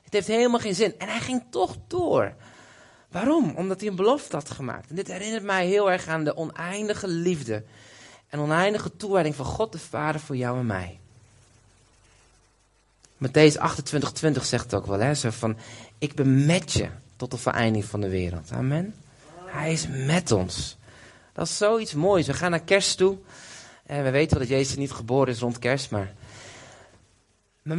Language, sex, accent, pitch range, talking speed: Dutch, male, Dutch, 125-205 Hz, 180 wpm